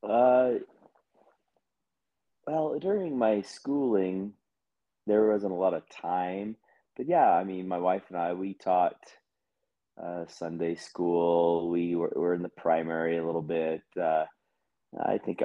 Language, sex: English, male